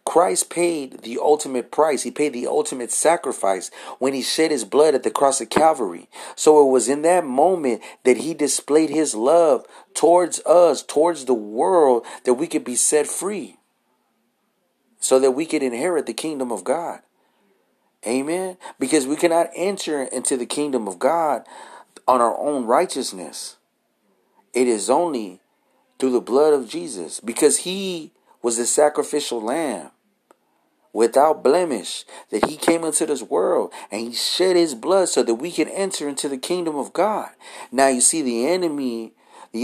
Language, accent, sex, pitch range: English, American, male, 125-170 Hz